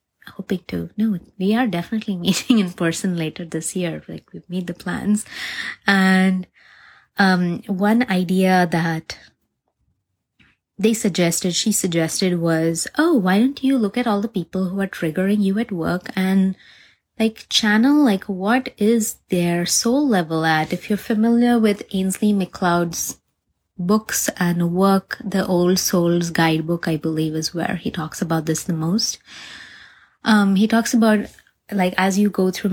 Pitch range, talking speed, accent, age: 175-215 Hz, 155 wpm, Indian, 20-39